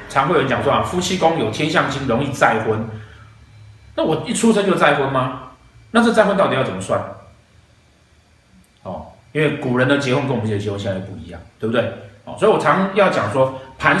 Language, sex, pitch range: Chinese, male, 110-160 Hz